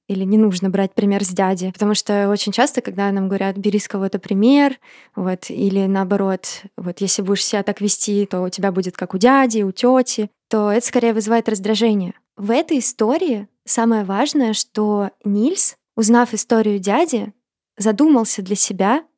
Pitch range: 200-240 Hz